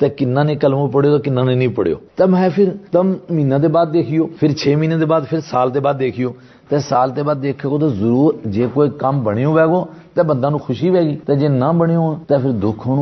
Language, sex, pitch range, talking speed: Urdu, male, 130-165 Hz, 175 wpm